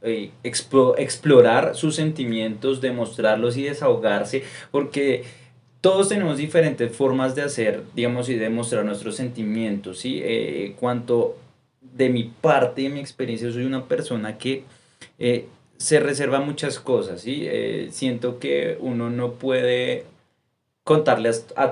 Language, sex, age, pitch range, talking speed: Spanish, male, 20-39, 115-135 Hz, 135 wpm